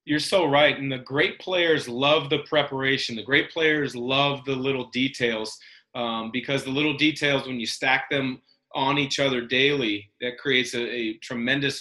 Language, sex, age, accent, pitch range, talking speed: English, male, 30-49, American, 125-150 Hz, 180 wpm